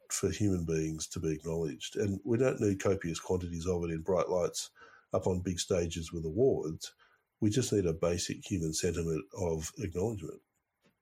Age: 50-69